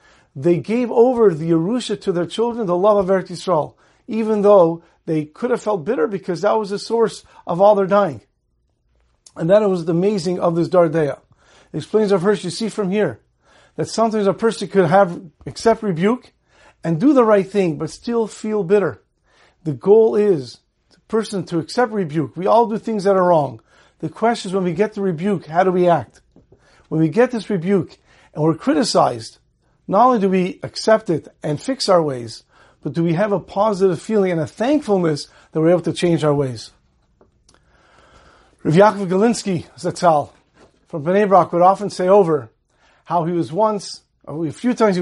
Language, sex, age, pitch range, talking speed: English, male, 50-69, 165-215 Hz, 190 wpm